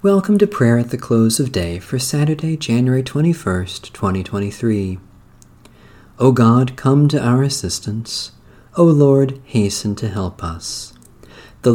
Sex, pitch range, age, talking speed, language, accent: male, 95-135 Hz, 40-59, 135 wpm, English, American